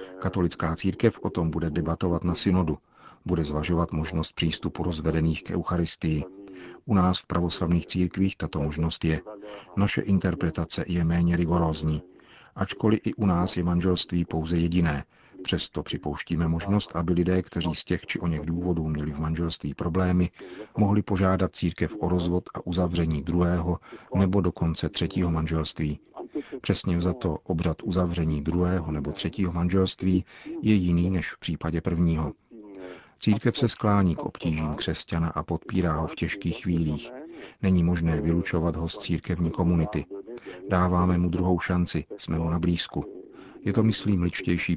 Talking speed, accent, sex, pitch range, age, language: 145 wpm, native, male, 80-95 Hz, 50-69, Czech